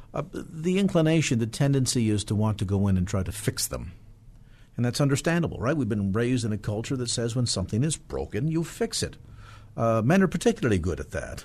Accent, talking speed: American, 220 wpm